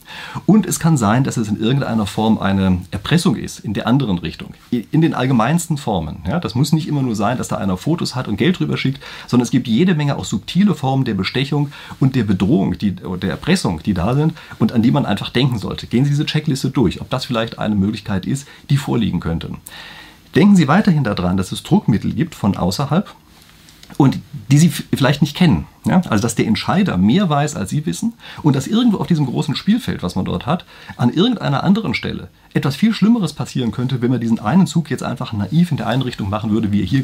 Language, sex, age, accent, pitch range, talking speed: German, male, 40-59, German, 105-155 Hz, 215 wpm